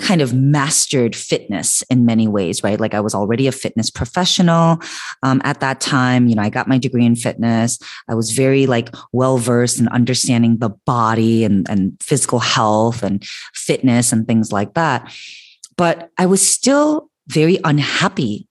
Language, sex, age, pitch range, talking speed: English, female, 30-49, 115-145 Hz, 170 wpm